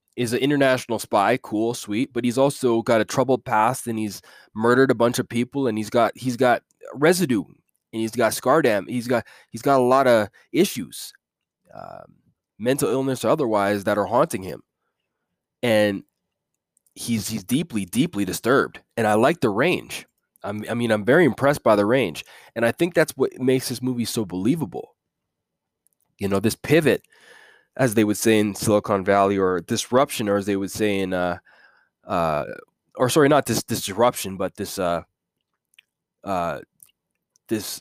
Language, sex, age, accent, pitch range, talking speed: English, male, 20-39, American, 100-120 Hz, 175 wpm